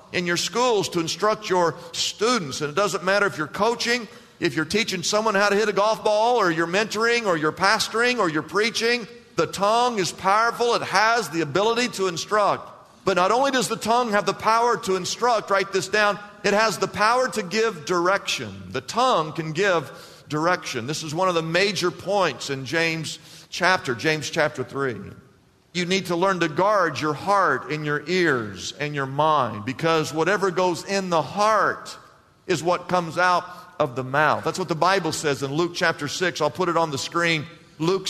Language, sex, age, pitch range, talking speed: English, male, 50-69, 160-210 Hz, 195 wpm